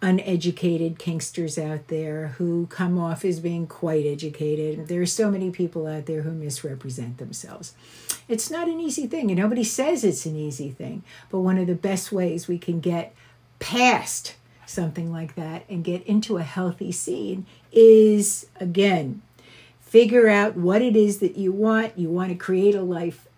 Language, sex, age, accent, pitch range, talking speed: English, female, 60-79, American, 160-205 Hz, 175 wpm